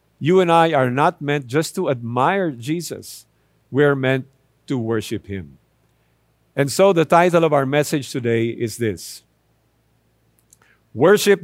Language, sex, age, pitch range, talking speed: English, male, 50-69, 125-175 Hz, 140 wpm